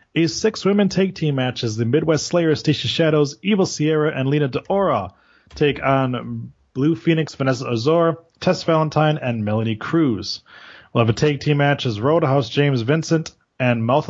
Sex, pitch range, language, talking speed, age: male, 120-155 Hz, English, 165 wpm, 30-49